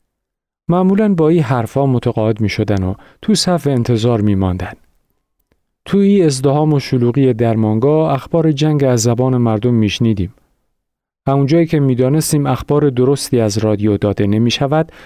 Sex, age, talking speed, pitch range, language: male, 40-59, 130 wpm, 110-150 Hz, Persian